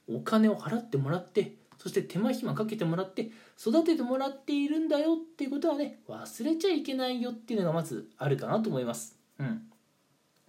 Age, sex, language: 20-39, male, Japanese